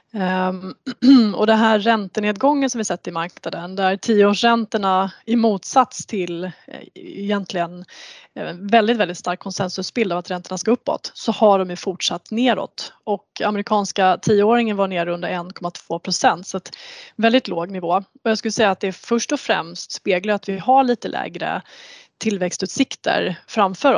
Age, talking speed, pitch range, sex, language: 20-39, 155 wpm, 185-230 Hz, female, Swedish